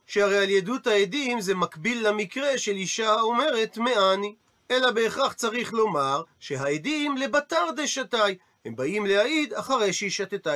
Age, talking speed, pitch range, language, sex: 40-59, 135 wpm, 180-230 Hz, Hebrew, male